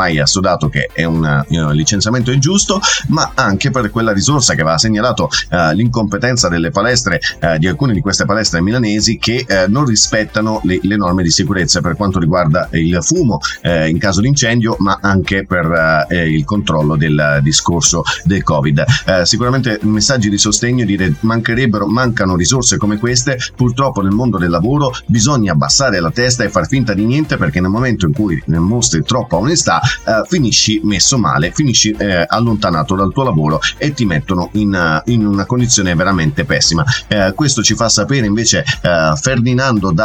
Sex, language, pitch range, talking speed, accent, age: male, Italian, 90-120 Hz, 180 wpm, native, 30-49